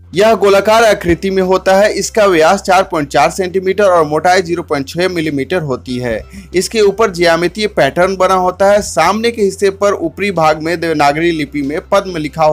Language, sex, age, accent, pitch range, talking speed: Hindi, male, 30-49, native, 155-200 Hz, 175 wpm